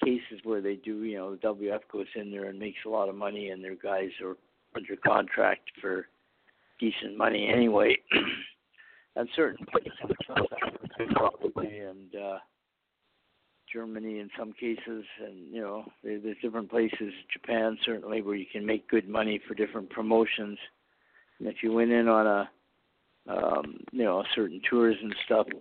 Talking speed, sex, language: 160 wpm, male, English